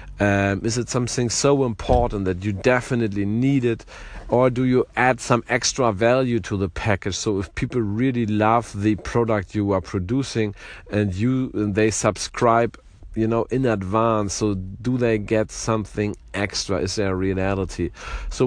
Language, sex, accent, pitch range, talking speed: English, male, German, 105-130 Hz, 165 wpm